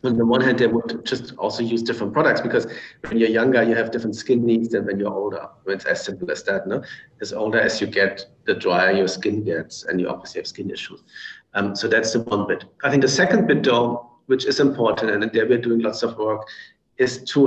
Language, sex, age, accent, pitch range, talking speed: English, male, 50-69, German, 105-125 Hz, 245 wpm